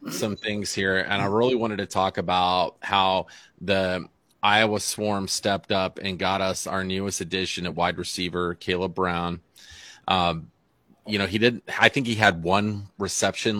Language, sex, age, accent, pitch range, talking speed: English, male, 30-49, American, 95-115 Hz, 170 wpm